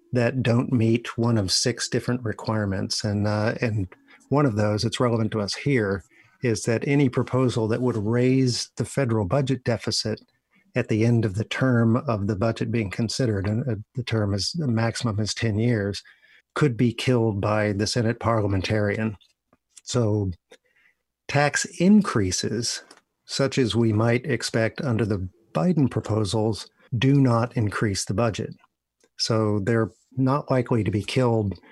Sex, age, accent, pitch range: male, 50-69, American, 105-125 Hz